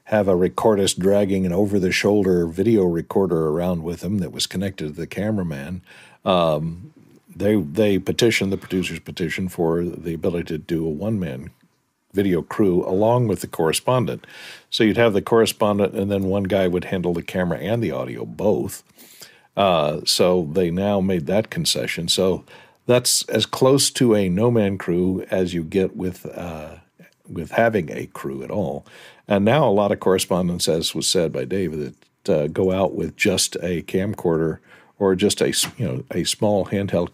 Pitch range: 90-105 Hz